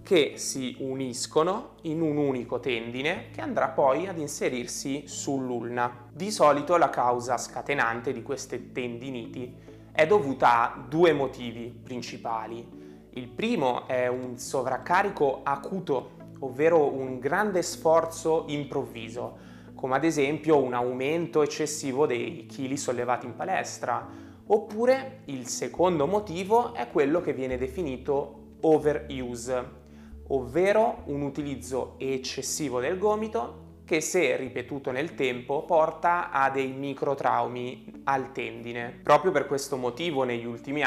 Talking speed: 120 wpm